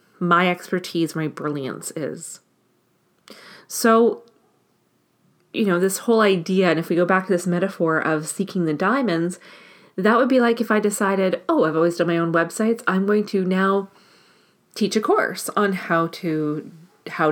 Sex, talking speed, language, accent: female, 165 wpm, English, American